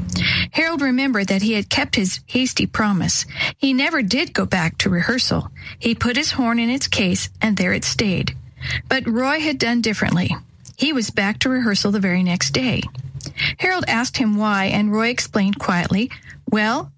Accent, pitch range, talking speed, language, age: American, 195-250 Hz, 175 wpm, English, 50-69